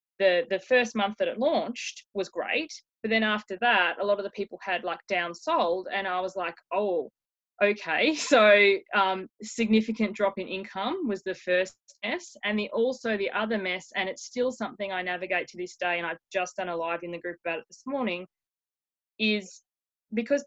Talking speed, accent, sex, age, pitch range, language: 195 wpm, Australian, female, 20-39, 180-215 Hz, English